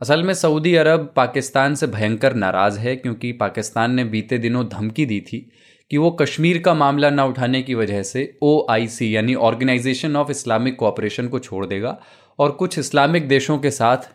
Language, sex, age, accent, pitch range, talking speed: Hindi, male, 20-39, native, 110-140 Hz, 180 wpm